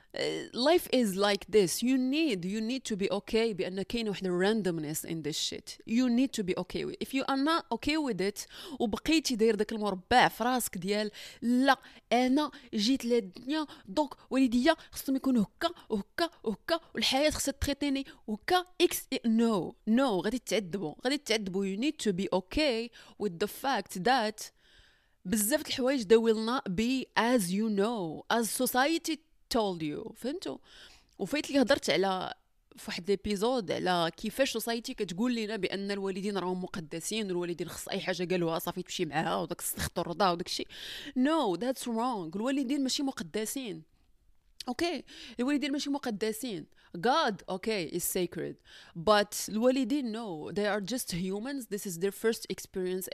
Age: 20-39